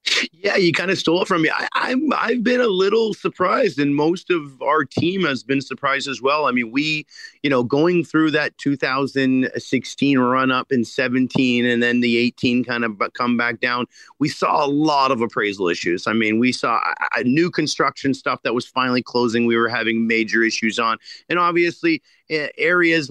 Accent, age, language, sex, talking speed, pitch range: American, 40-59, English, male, 195 wpm, 130-155 Hz